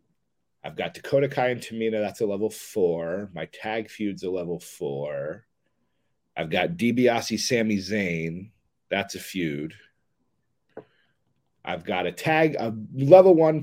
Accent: American